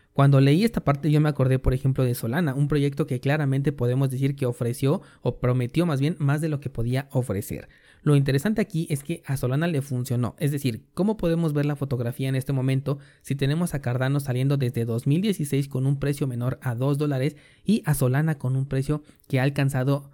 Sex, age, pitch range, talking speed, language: male, 30-49, 130-155 Hz, 210 wpm, Spanish